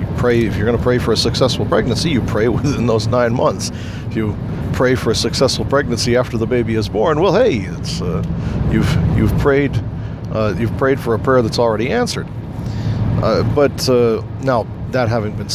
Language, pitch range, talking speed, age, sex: English, 110-125 Hz, 195 wpm, 50-69, male